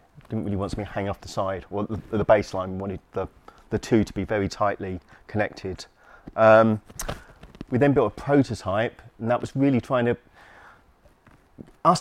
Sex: male